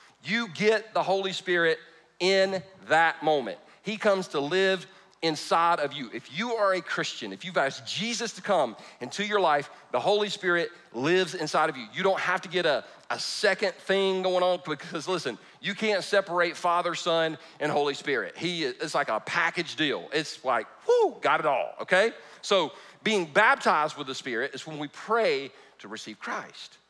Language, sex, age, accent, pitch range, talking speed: English, male, 40-59, American, 160-205 Hz, 185 wpm